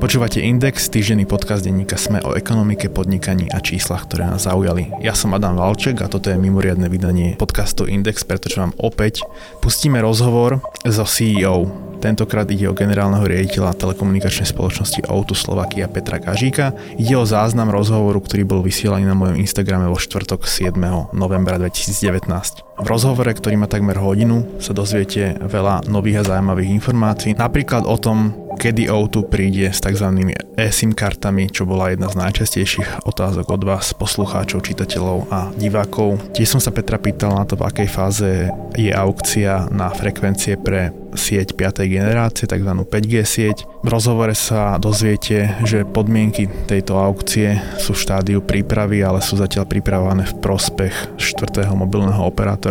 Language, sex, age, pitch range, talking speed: Slovak, male, 20-39, 95-110 Hz, 155 wpm